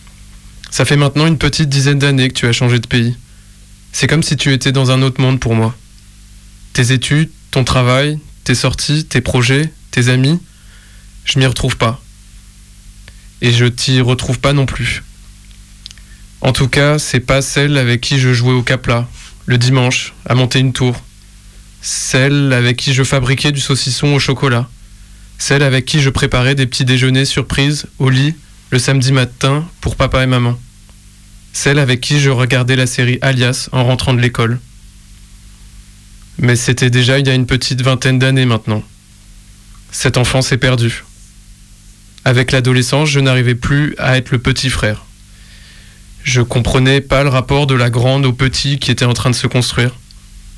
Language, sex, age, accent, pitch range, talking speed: French, male, 20-39, French, 105-135 Hz, 170 wpm